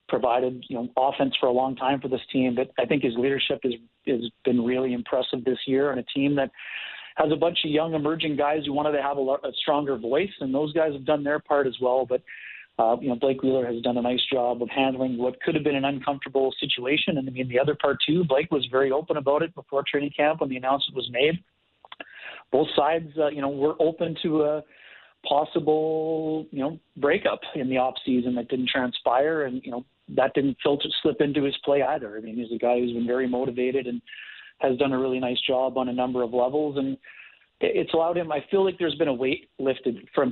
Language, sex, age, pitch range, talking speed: English, male, 30-49, 125-145 Hz, 235 wpm